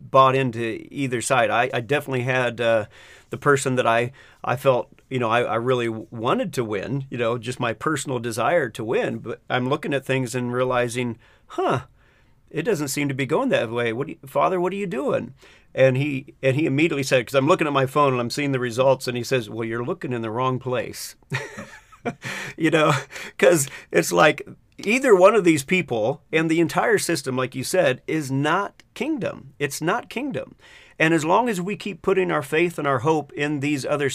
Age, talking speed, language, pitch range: 40-59, 210 wpm, English, 125-150 Hz